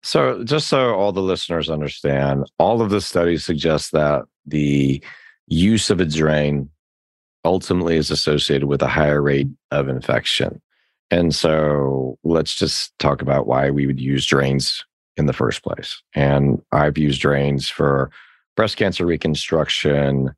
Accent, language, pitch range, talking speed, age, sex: American, English, 70-85 Hz, 145 wpm, 40-59, male